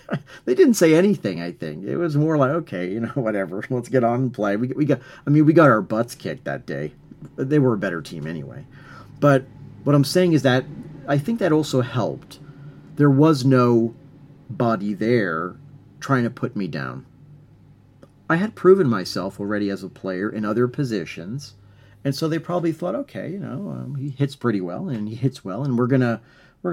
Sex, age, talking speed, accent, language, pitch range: male, 40-59, 200 wpm, American, English, 100-145 Hz